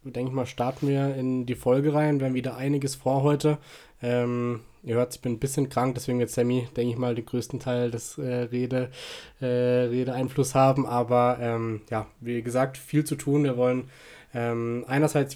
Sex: male